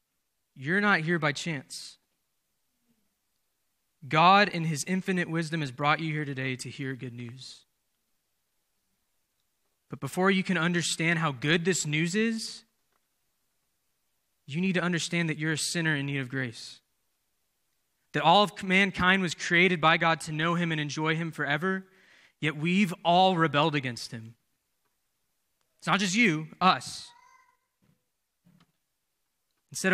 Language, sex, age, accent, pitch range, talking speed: English, male, 20-39, American, 140-180 Hz, 135 wpm